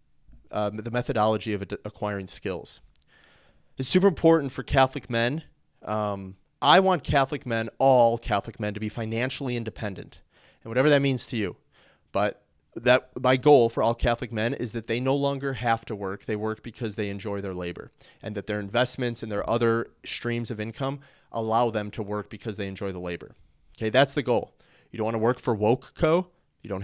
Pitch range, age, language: 100-125 Hz, 30-49, English